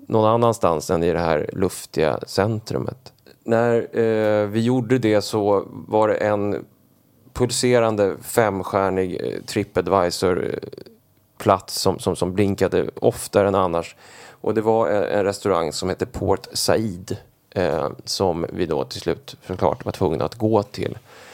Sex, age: male, 30-49